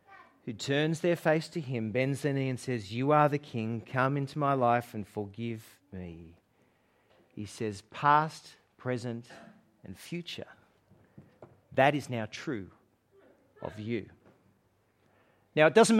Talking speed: 140 wpm